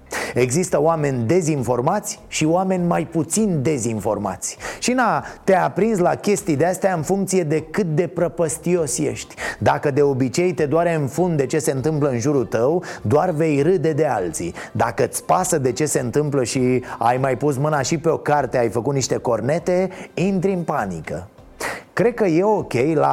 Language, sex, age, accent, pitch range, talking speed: Romanian, male, 30-49, native, 135-180 Hz, 180 wpm